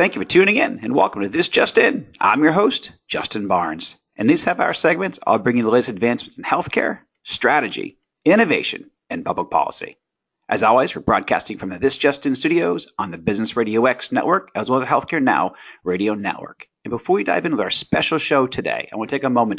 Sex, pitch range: male, 115-165 Hz